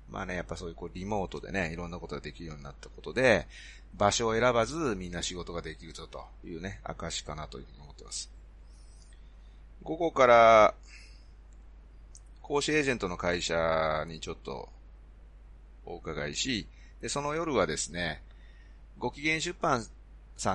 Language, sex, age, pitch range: Japanese, male, 30-49, 80-115 Hz